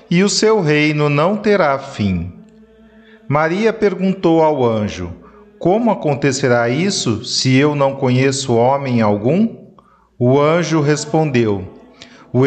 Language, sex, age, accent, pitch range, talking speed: Portuguese, male, 40-59, Brazilian, 130-190 Hz, 115 wpm